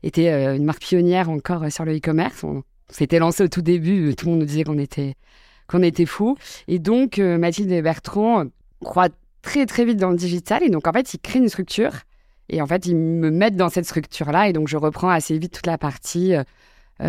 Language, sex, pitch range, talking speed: French, female, 155-185 Hz, 220 wpm